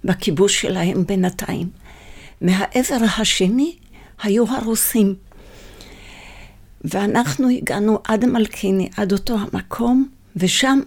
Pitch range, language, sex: 170-225 Hz, Hebrew, female